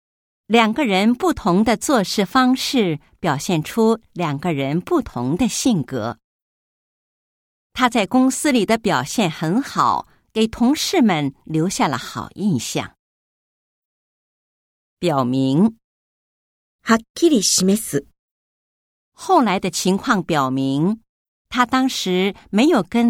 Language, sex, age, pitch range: Japanese, female, 50-69, 165-255 Hz